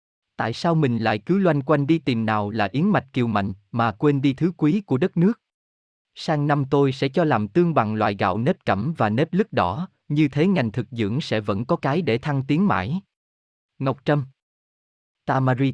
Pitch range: 110-155 Hz